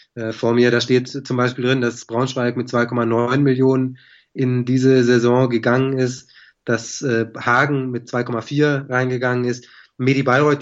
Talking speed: 140 wpm